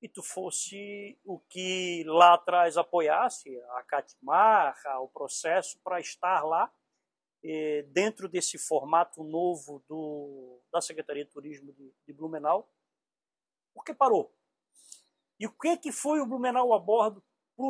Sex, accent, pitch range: male, Brazilian, 170-225 Hz